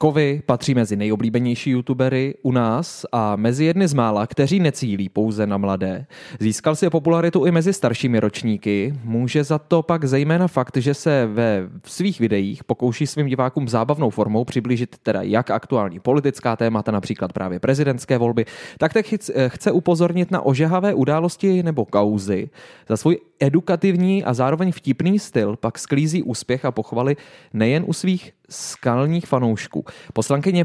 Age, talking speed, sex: 20-39, 155 wpm, male